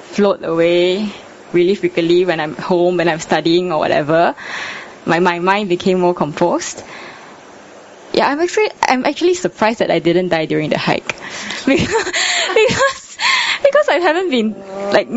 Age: 10-29